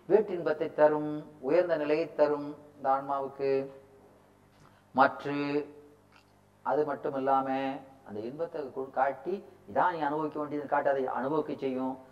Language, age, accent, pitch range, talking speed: Tamil, 40-59, native, 135-170 Hz, 100 wpm